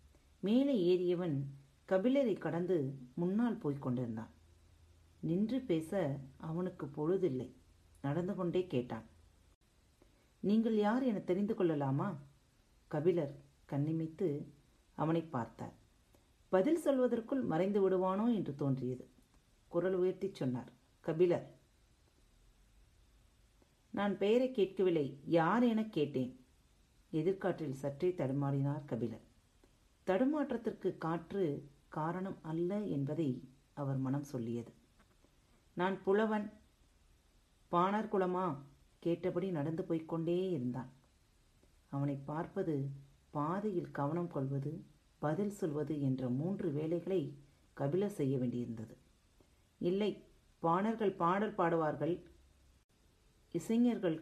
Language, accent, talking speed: Tamil, native, 85 wpm